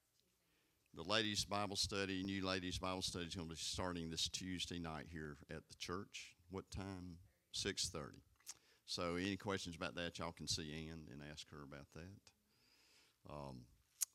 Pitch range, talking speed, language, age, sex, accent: 75-95 Hz, 160 wpm, English, 50-69, male, American